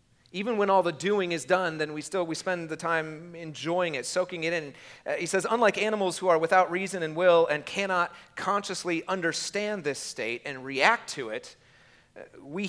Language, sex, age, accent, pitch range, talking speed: English, male, 40-59, American, 145-185 Hz, 190 wpm